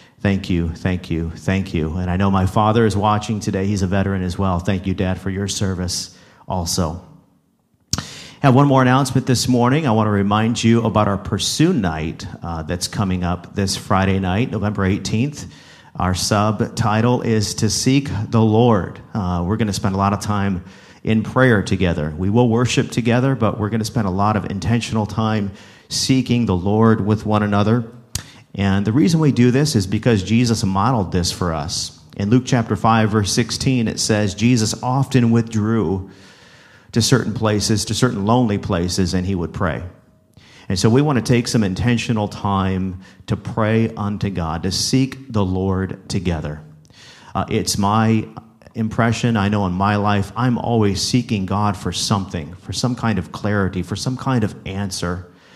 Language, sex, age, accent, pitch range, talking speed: English, male, 40-59, American, 95-115 Hz, 180 wpm